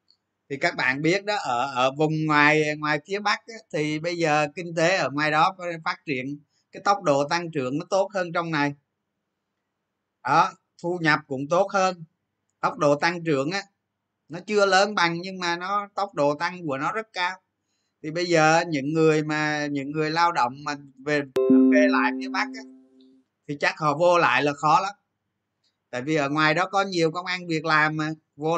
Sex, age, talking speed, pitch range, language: male, 20-39, 205 wpm, 130-170 Hz, Vietnamese